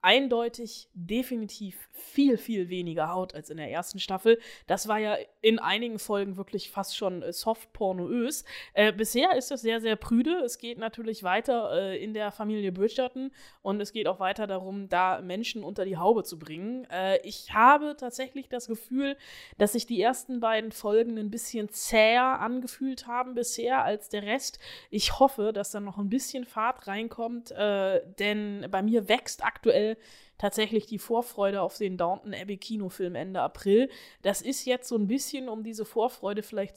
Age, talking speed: 20-39, 175 wpm